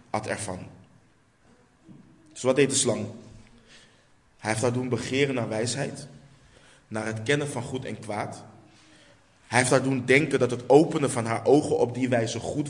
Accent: Dutch